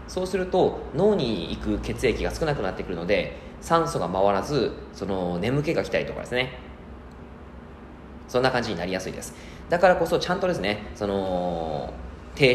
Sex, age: male, 20-39